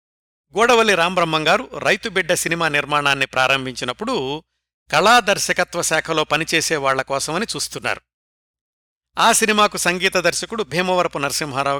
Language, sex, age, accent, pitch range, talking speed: Telugu, male, 60-79, native, 135-185 Hz, 90 wpm